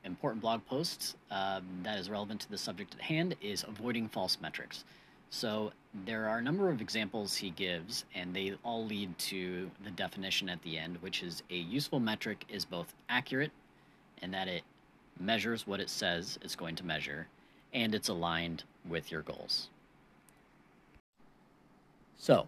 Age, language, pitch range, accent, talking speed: 30-49, English, 95-120 Hz, American, 165 wpm